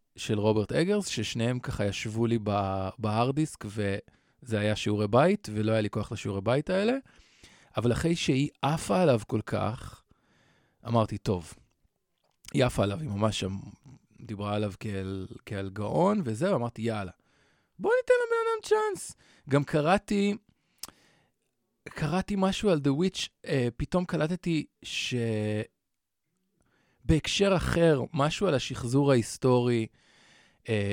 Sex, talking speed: male, 115 wpm